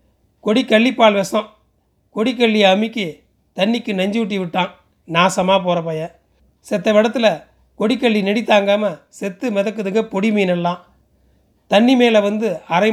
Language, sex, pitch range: Tamil, male, 185-220 Hz